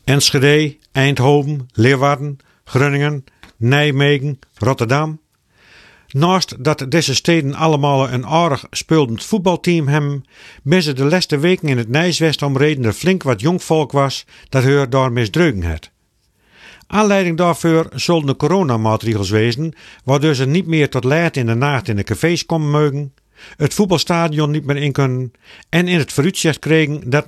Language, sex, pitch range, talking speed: Dutch, male, 130-165 Hz, 145 wpm